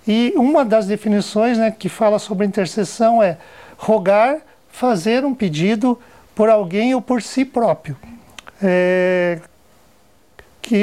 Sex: male